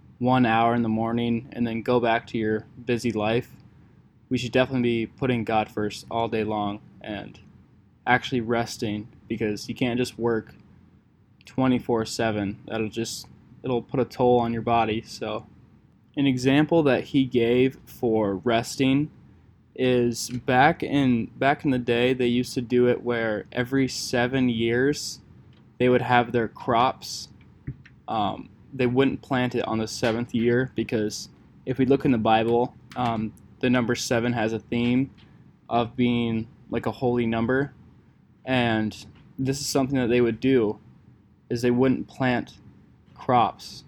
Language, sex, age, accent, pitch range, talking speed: English, male, 10-29, American, 115-125 Hz, 155 wpm